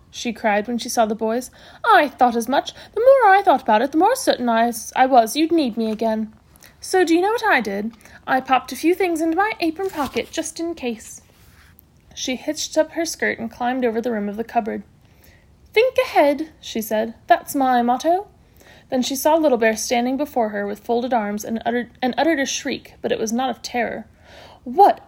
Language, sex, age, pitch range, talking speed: English, female, 30-49, 225-320 Hz, 215 wpm